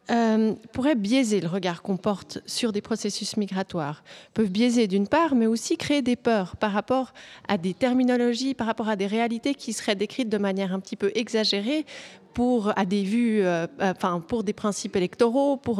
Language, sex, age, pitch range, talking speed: French, female, 30-49, 205-260 Hz, 190 wpm